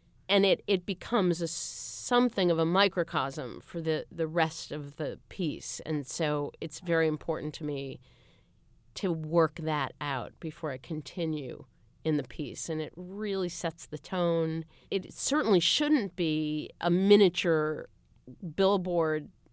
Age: 40-59